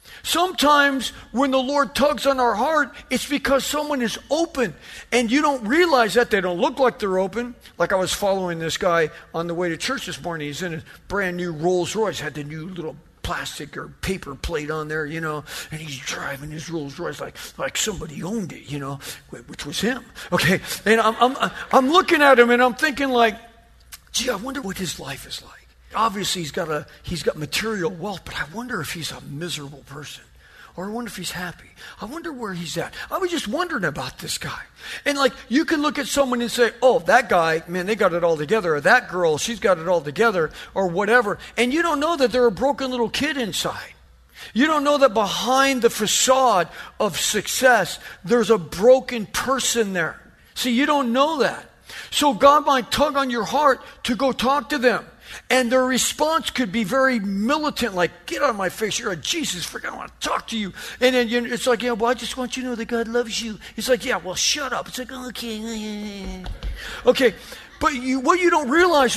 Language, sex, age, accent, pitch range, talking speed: English, male, 50-69, American, 180-265 Hz, 215 wpm